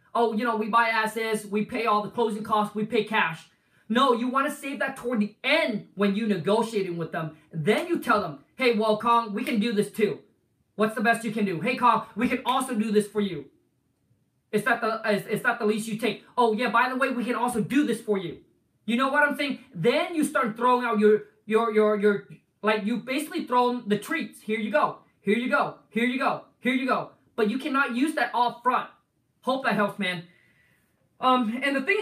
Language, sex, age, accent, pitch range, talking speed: English, male, 20-39, American, 210-250 Hz, 230 wpm